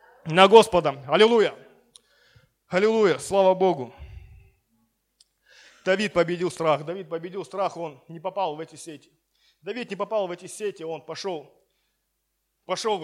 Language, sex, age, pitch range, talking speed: Russian, male, 20-39, 170-210 Hz, 125 wpm